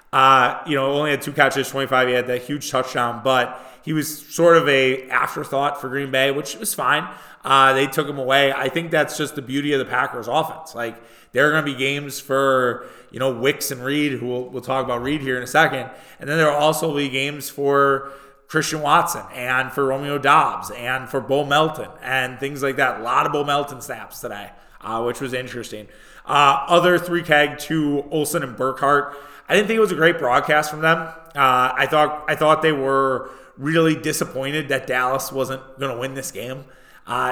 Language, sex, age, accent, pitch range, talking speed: English, male, 20-39, American, 125-145 Hz, 215 wpm